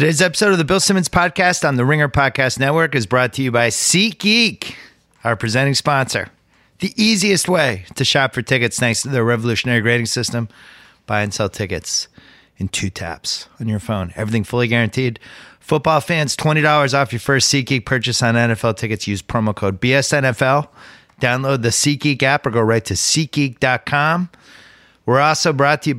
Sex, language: male, English